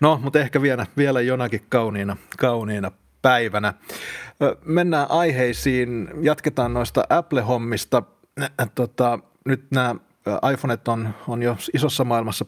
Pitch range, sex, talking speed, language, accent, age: 110-130 Hz, male, 105 wpm, Finnish, native, 30-49